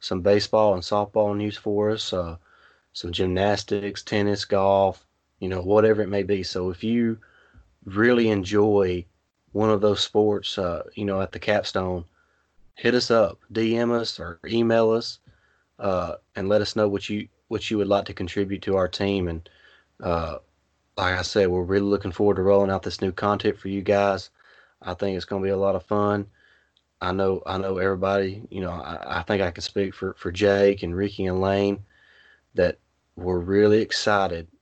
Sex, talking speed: male, 190 wpm